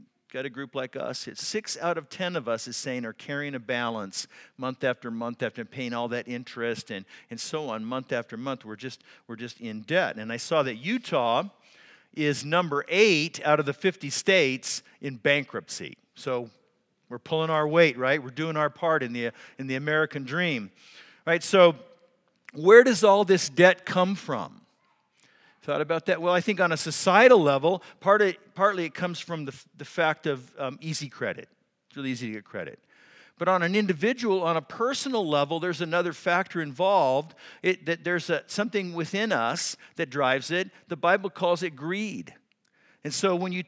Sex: male